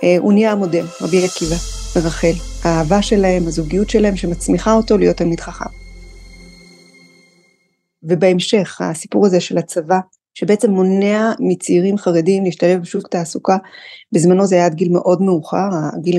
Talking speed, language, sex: 130 wpm, Hebrew, female